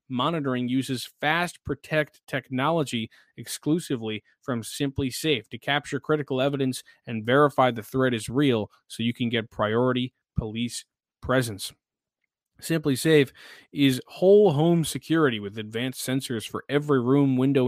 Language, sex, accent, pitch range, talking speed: English, male, American, 125-150 Hz, 130 wpm